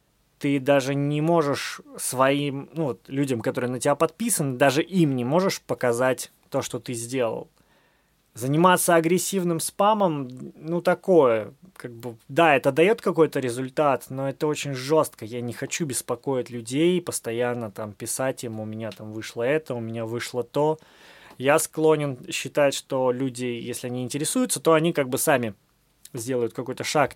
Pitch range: 125-165 Hz